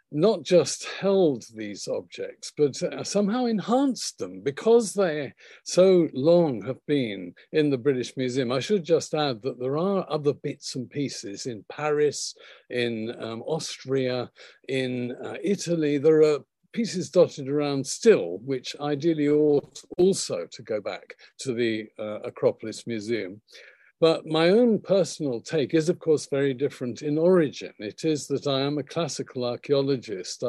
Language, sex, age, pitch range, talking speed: English, male, 50-69, 130-180 Hz, 150 wpm